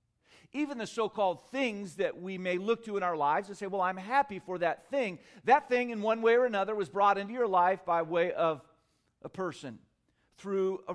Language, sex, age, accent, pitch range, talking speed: English, male, 50-69, American, 135-185 Hz, 215 wpm